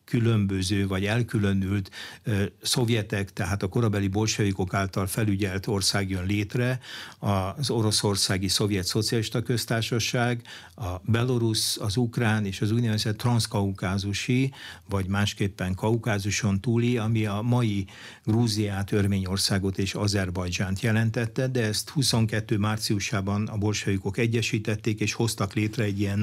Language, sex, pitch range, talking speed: Hungarian, male, 100-115 Hz, 115 wpm